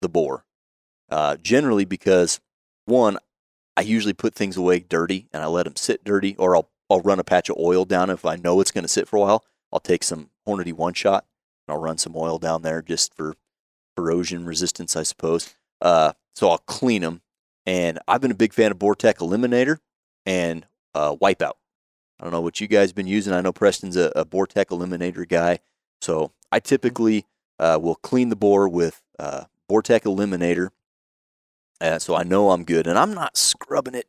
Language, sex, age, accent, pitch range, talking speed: English, male, 30-49, American, 80-100 Hz, 205 wpm